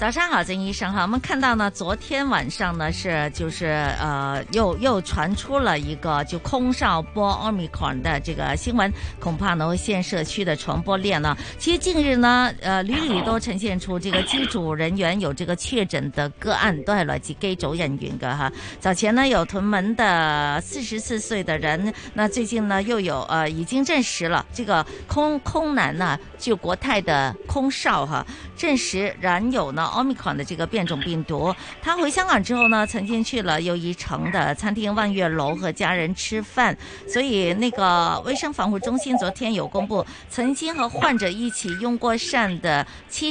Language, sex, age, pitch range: Chinese, female, 50-69, 170-240 Hz